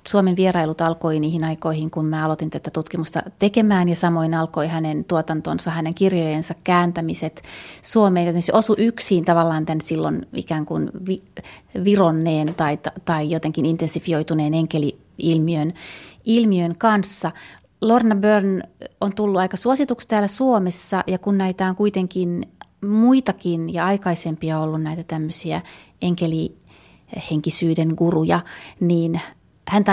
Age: 30-49